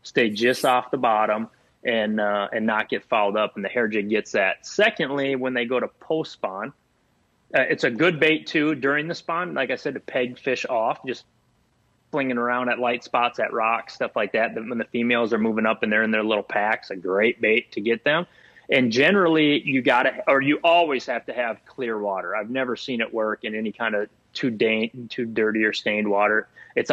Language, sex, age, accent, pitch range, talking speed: English, male, 30-49, American, 115-135 Hz, 220 wpm